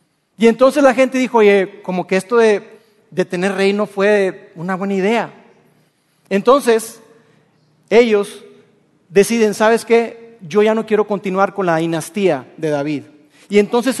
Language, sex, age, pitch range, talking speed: Spanish, male, 40-59, 195-235 Hz, 145 wpm